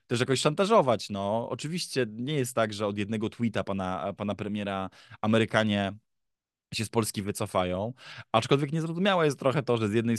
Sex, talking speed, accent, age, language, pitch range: male, 165 wpm, native, 20-39, Polish, 100-125 Hz